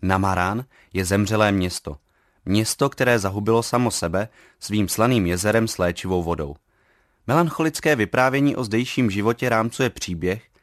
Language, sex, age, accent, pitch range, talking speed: Czech, male, 30-49, native, 95-120 Hz, 125 wpm